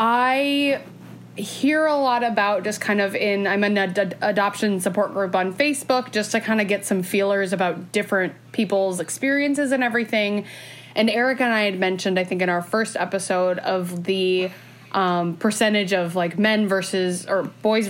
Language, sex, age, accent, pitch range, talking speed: English, female, 20-39, American, 185-230 Hz, 175 wpm